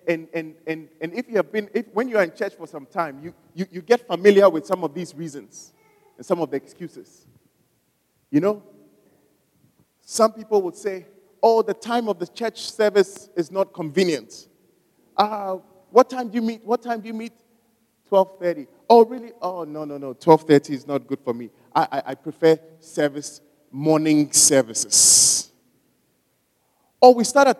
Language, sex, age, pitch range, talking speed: English, male, 30-49, 165-230 Hz, 185 wpm